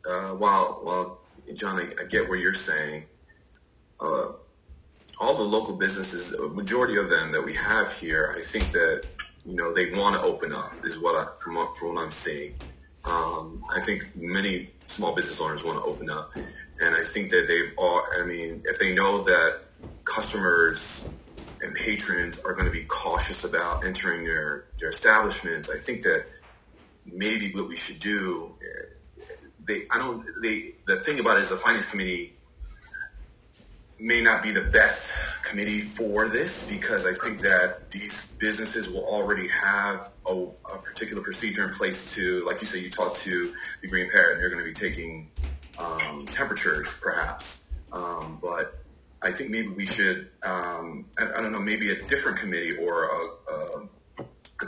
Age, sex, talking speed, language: 30-49, male, 180 wpm, English